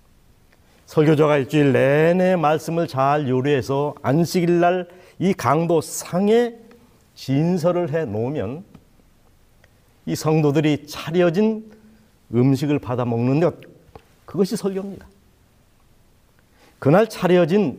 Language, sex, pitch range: Korean, male, 120-170 Hz